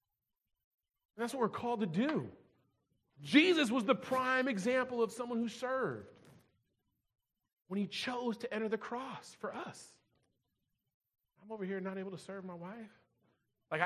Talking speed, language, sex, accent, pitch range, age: 145 wpm, English, male, American, 165-235 Hz, 40-59